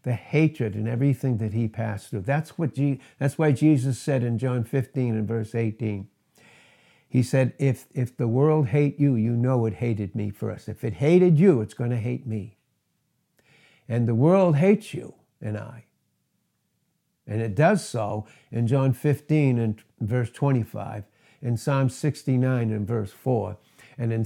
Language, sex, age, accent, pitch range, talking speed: English, male, 60-79, American, 110-140 Hz, 170 wpm